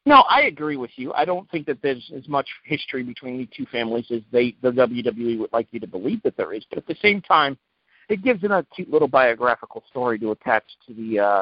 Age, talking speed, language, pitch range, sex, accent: 50-69, 240 wpm, English, 125-200 Hz, male, American